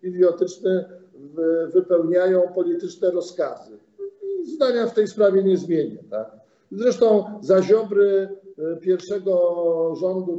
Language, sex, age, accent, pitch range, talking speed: Polish, male, 50-69, native, 170-210 Hz, 85 wpm